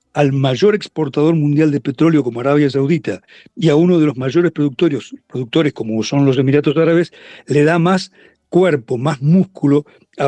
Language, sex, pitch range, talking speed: Spanish, male, 140-180 Hz, 170 wpm